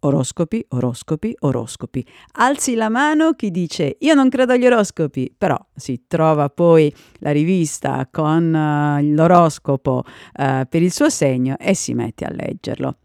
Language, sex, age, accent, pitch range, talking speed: Italian, female, 50-69, native, 140-200 Hz, 140 wpm